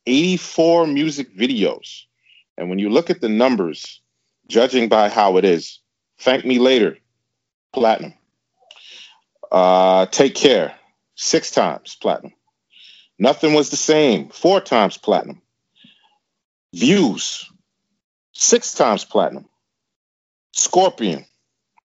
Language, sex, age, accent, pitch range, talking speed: English, male, 40-59, American, 95-130 Hz, 100 wpm